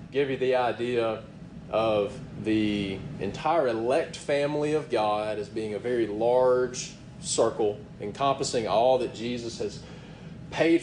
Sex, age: male, 30-49